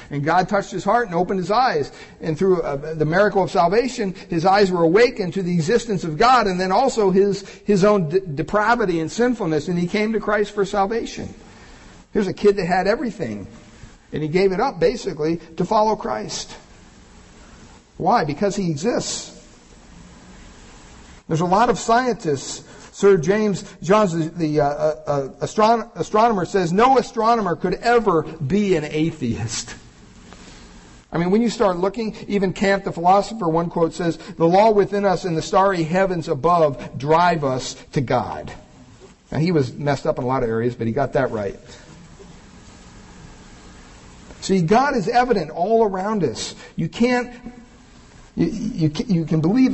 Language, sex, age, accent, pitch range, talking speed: English, male, 50-69, American, 155-205 Hz, 165 wpm